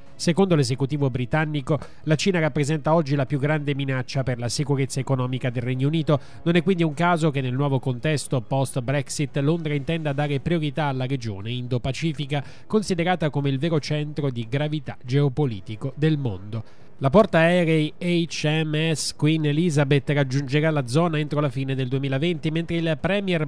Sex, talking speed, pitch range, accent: male, 160 wpm, 135-165 Hz, native